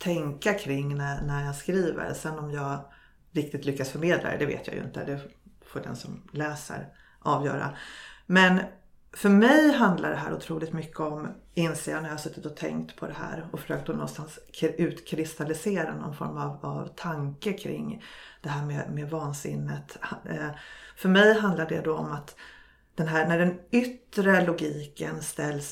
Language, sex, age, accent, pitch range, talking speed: Swedish, female, 30-49, native, 150-180 Hz, 165 wpm